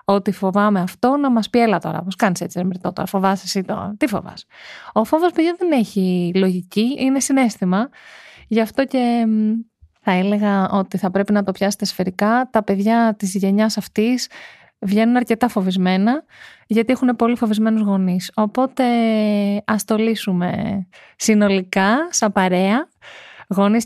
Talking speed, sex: 150 wpm, female